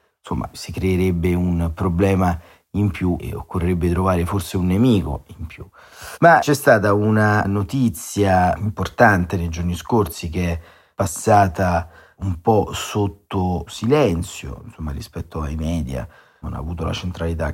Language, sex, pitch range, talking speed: Italian, male, 85-105 Hz, 135 wpm